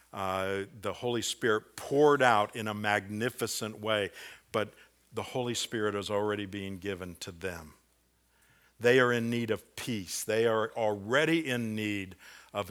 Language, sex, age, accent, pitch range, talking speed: English, male, 50-69, American, 80-120 Hz, 150 wpm